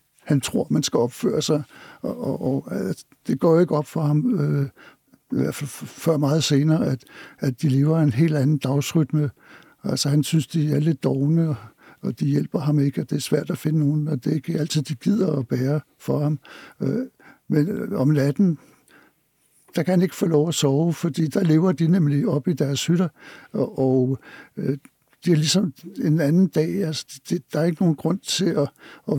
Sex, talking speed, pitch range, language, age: male, 195 wpm, 145-170 Hz, Danish, 60-79